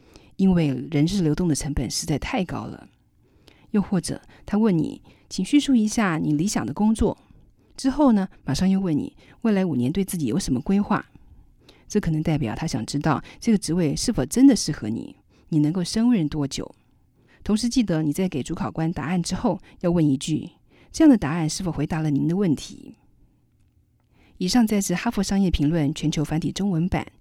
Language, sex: Chinese, female